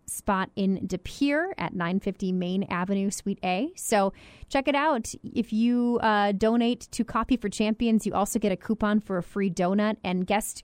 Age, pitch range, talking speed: 30-49, 190-235 Hz, 185 wpm